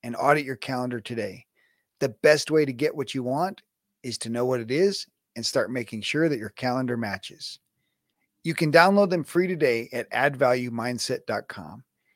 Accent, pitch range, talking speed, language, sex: American, 120-150 Hz, 175 wpm, English, male